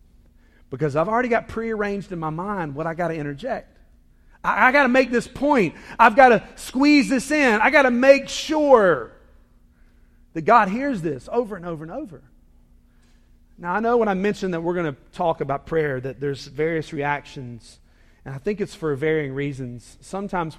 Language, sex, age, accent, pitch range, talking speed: English, male, 40-59, American, 150-220 Hz, 185 wpm